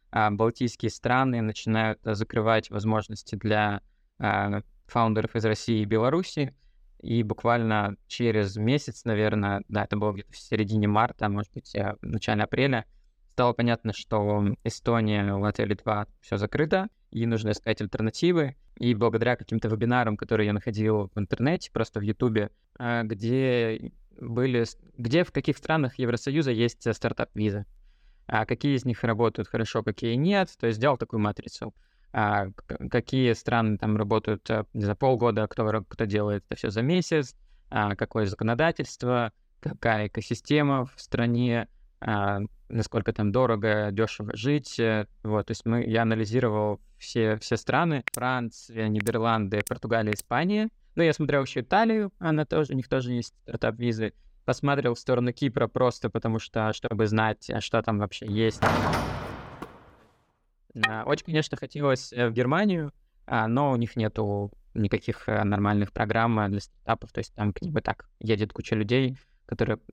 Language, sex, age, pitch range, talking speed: Russian, male, 20-39, 105-125 Hz, 140 wpm